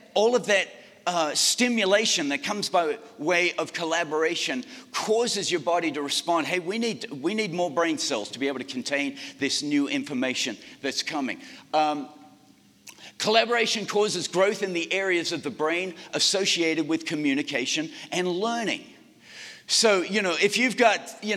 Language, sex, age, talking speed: English, male, 50-69, 155 wpm